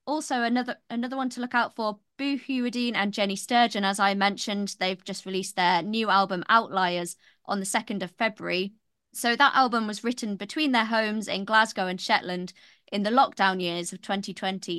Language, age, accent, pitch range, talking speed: English, 20-39, British, 190-230 Hz, 185 wpm